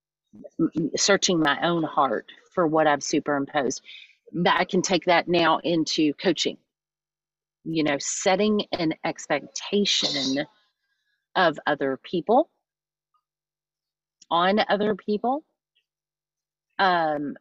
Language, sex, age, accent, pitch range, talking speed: English, female, 40-59, American, 145-190 Hz, 95 wpm